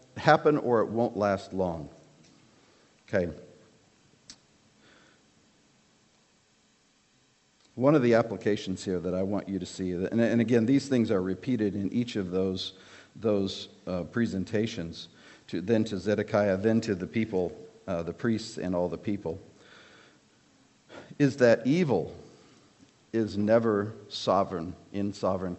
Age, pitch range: 50-69, 95-110 Hz